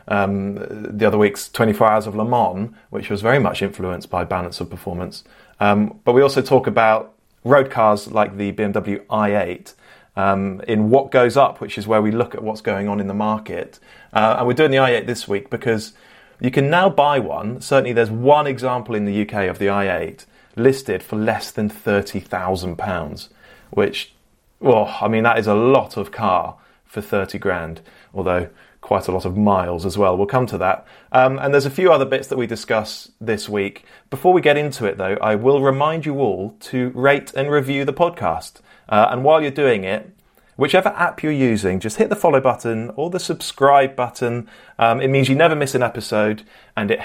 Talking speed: 205 wpm